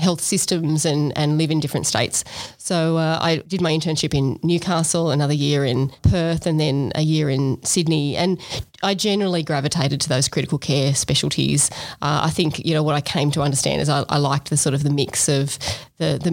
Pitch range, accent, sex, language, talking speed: 145-175 Hz, Australian, female, English, 210 wpm